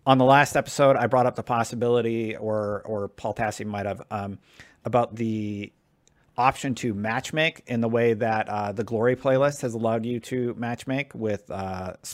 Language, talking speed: English, 180 wpm